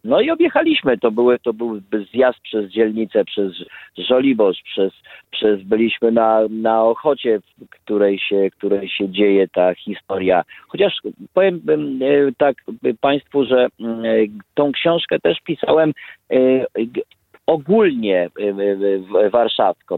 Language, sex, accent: Polish, male, native